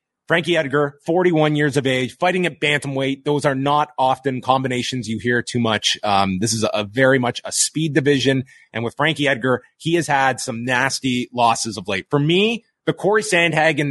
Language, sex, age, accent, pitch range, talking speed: English, male, 30-49, American, 125-155 Hz, 190 wpm